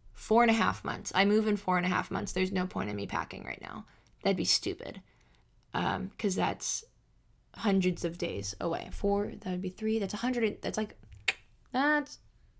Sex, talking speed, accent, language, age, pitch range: female, 195 wpm, American, English, 10-29, 175-210 Hz